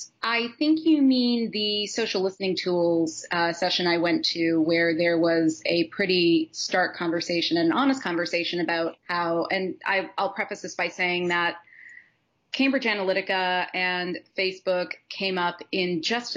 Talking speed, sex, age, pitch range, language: 145 wpm, female, 30-49, 170-200 Hz, English